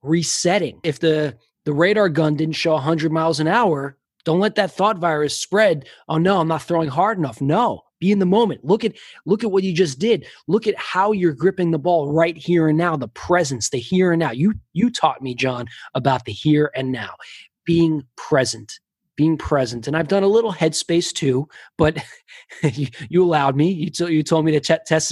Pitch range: 135-175 Hz